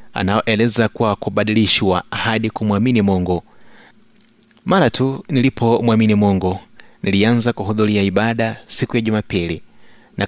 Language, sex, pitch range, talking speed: Swahili, male, 100-125 Hz, 100 wpm